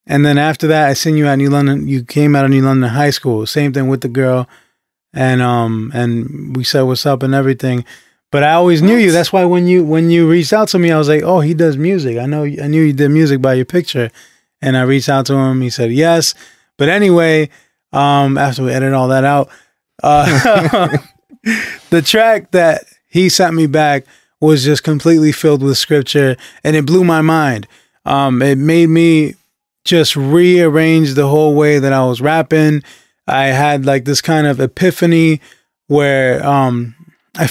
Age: 20-39